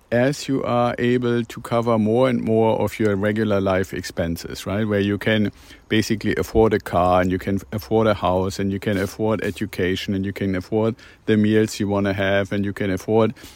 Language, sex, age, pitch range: English, male, 50-69, 100-125 Hz